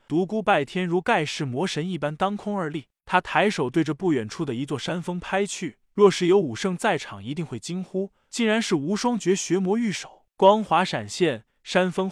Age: 20-39